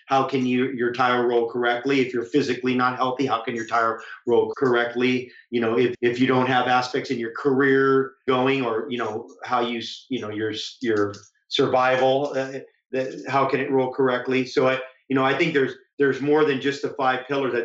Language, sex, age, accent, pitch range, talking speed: English, male, 40-59, American, 120-135 Hz, 210 wpm